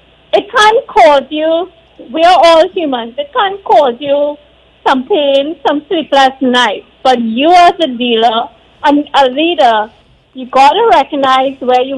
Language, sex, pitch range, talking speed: English, female, 250-320 Hz, 155 wpm